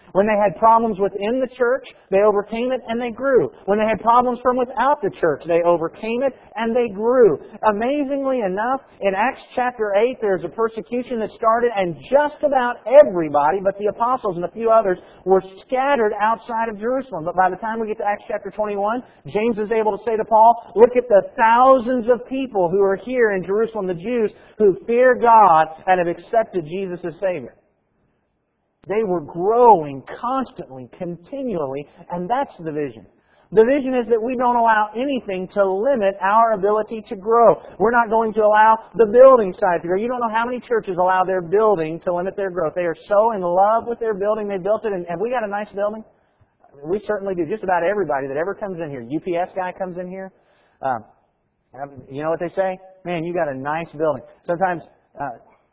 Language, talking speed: English, 200 wpm